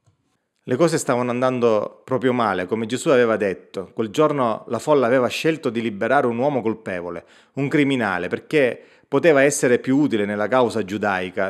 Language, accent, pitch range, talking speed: Italian, native, 110-150 Hz, 160 wpm